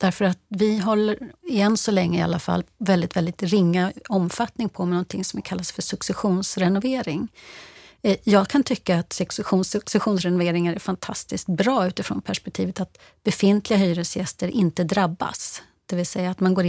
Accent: native